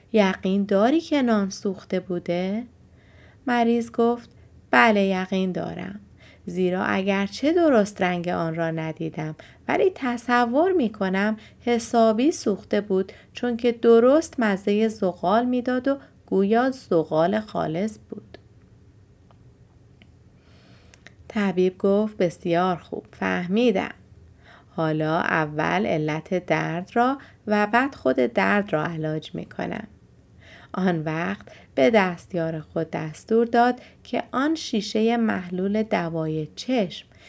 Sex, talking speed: female, 110 wpm